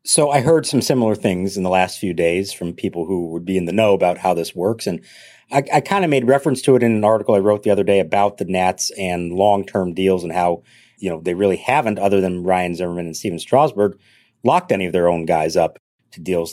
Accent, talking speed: American, 245 wpm